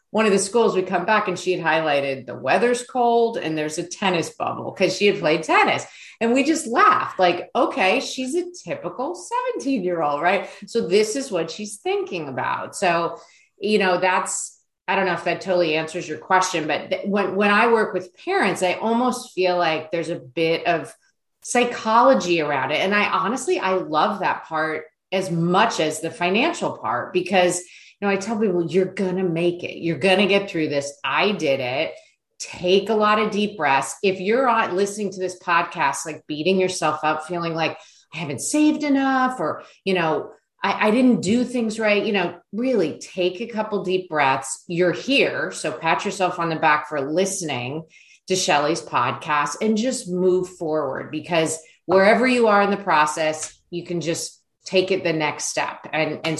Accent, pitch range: American, 160-210 Hz